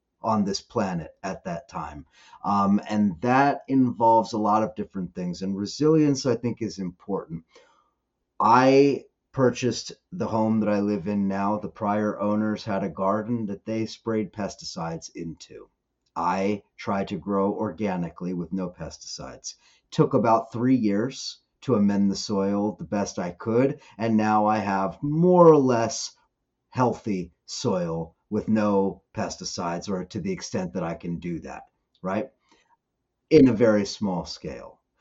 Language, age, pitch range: English, 40-59, 95-110 Hz